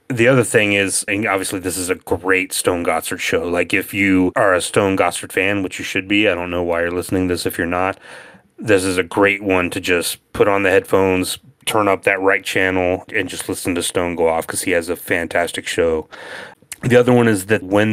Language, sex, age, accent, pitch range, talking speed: English, male, 30-49, American, 90-100 Hz, 240 wpm